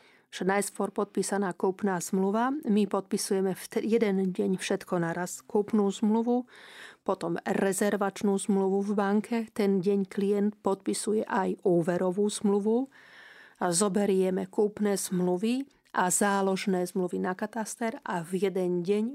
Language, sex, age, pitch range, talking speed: Slovak, female, 40-59, 185-215 Hz, 115 wpm